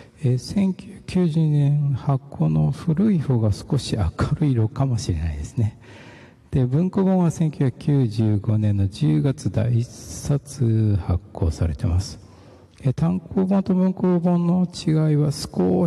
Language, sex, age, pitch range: Japanese, male, 60-79, 100-150 Hz